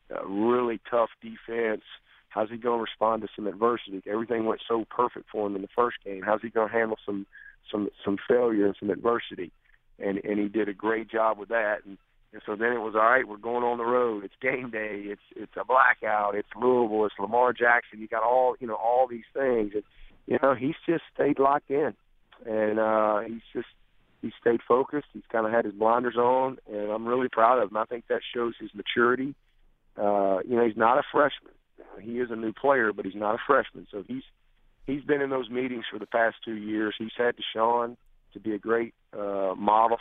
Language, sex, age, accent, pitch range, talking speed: English, male, 40-59, American, 105-125 Hz, 220 wpm